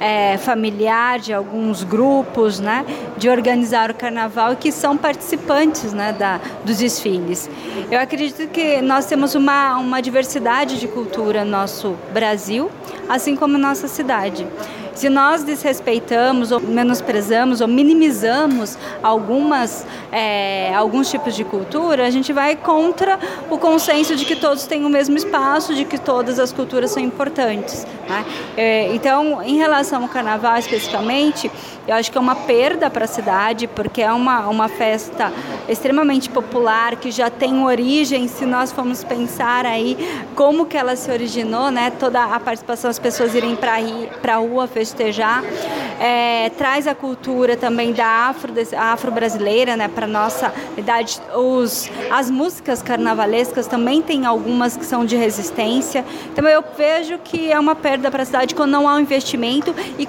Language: Portuguese